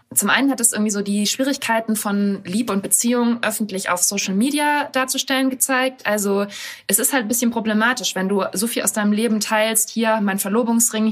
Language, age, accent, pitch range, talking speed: German, 20-39, German, 200-240 Hz, 195 wpm